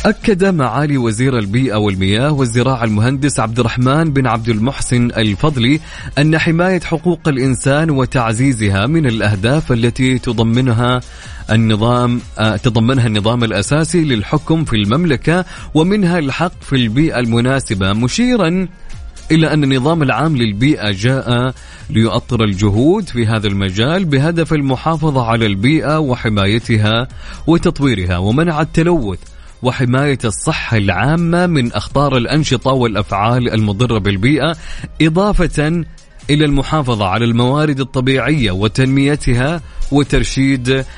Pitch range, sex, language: 115-155 Hz, male, Arabic